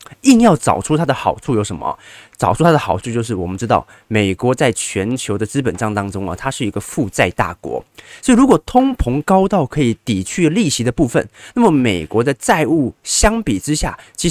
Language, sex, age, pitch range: Chinese, male, 20-39, 110-155 Hz